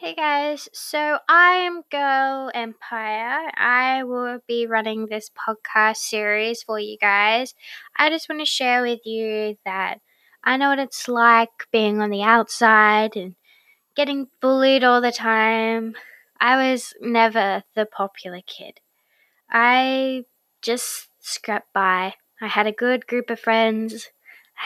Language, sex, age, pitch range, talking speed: English, female, 10-29, 220-270 Hz, 140 wpm